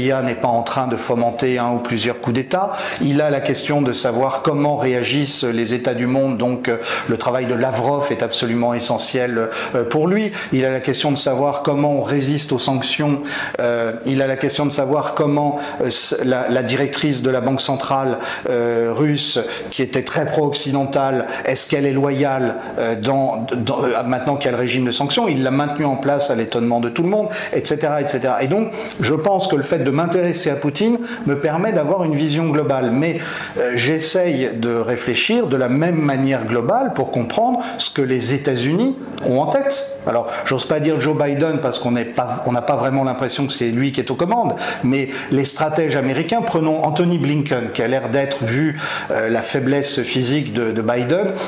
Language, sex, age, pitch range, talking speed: French, male, 40-59, 125-155 Hz, 190 wpm